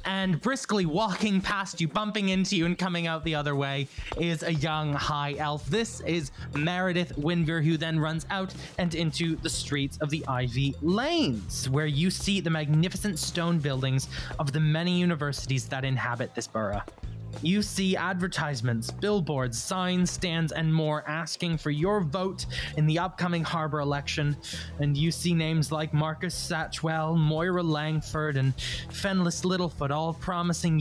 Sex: male